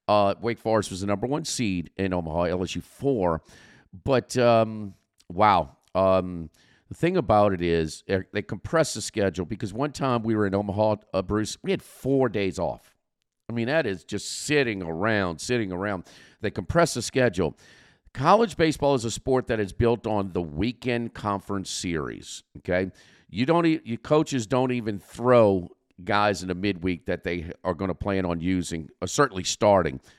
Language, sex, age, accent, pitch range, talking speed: English, male, 50-69, American, 95-125 Hz, 175 wpm